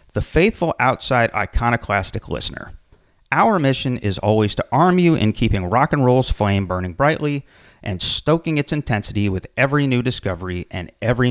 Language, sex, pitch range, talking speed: English, male, 95-135 Hz, 160 wpm